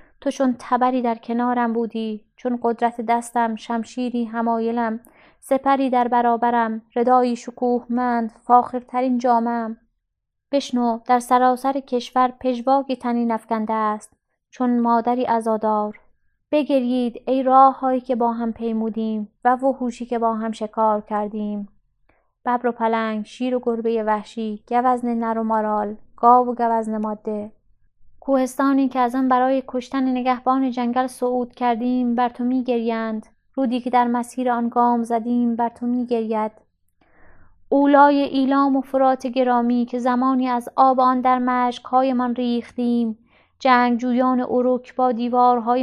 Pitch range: 230-255 Hz